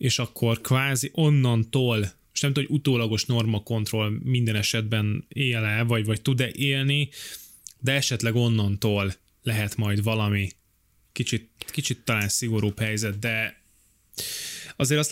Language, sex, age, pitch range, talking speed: Hungarian, male, 20-39, 105-130 Hz, 125 wpm